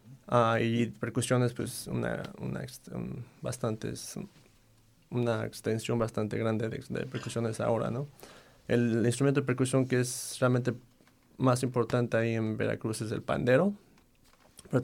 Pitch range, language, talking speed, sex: 115-130 Hz, English, 140 wpm, male